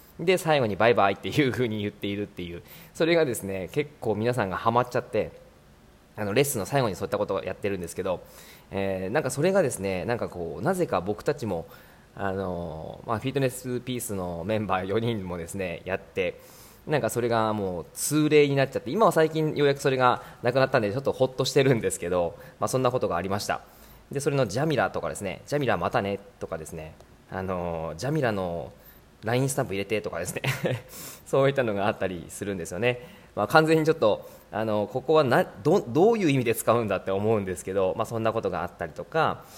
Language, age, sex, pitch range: Japanese, 20-39, male, 95-145 Hz